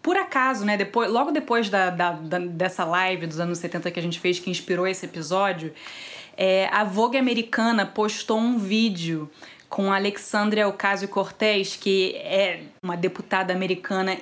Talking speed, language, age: 160 wpm, Portuguese, 20-39